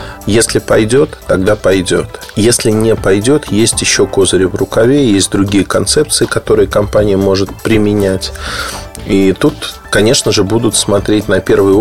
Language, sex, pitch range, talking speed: Russian, male, 95-130 Hz, 135 wpm